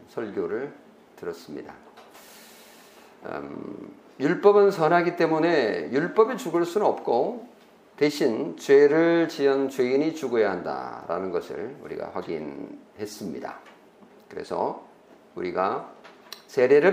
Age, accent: 50-69, native